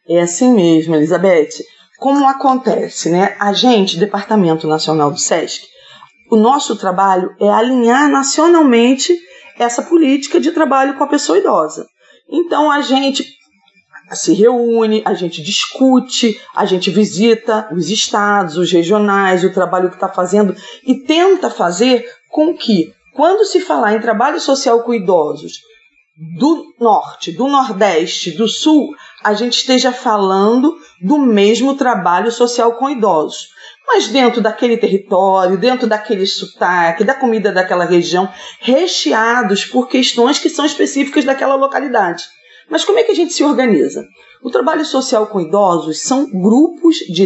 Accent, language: Brazilian, Portuguese